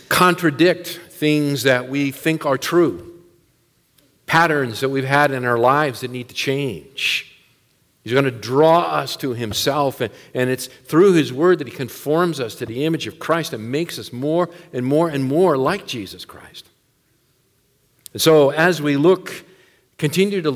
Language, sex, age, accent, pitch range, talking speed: English, male, 50-69, American, 130-160 Hz, 165 wpm